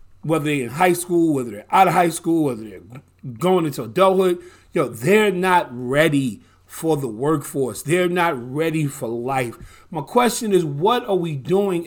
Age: 40-59